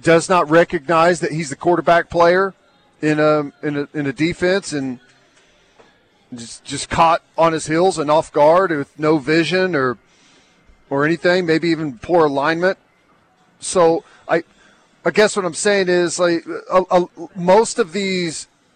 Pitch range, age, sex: 155-185 Hz, 40-59, male